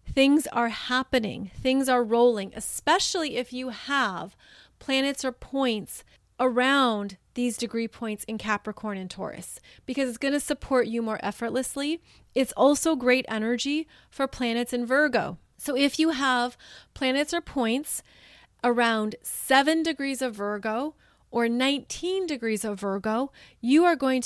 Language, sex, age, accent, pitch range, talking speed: English, female, 30-49, American, 225-275 Hz, 140 wpm